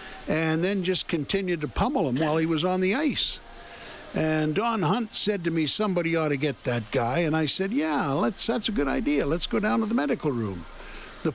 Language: English